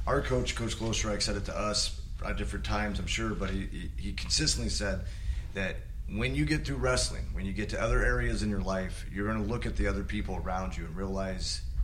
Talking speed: 230 wpm